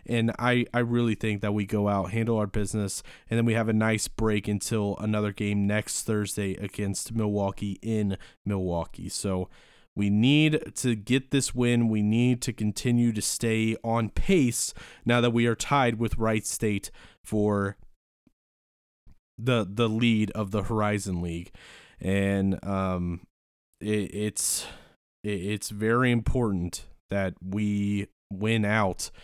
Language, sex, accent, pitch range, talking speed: English, male, American, 95-115 Hz, 145 wpm